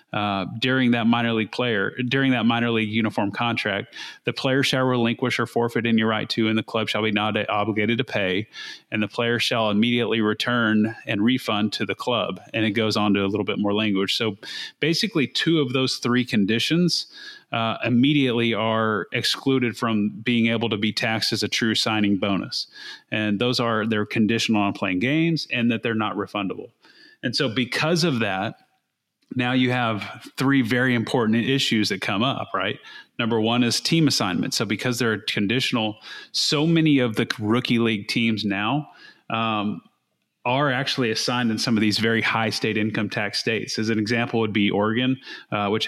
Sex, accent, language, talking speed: male, American, English, 185 wpm